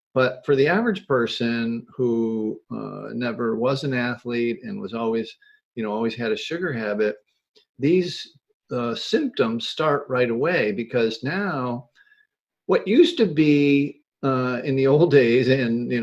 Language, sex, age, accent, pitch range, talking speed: English, male, 50-69, American, 120-185 Hz, 150 wpm